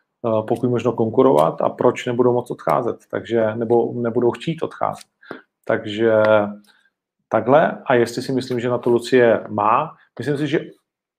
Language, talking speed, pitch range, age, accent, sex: Czech, 140 wpm, 110-130 Hz, 40-59, native, male